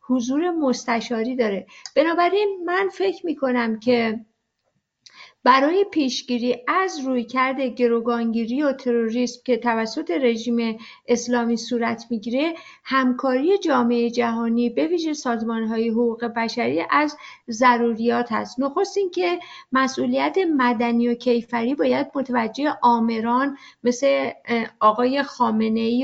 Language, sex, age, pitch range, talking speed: Persian, female, 50-69, 235-290 Hz, 105 wpm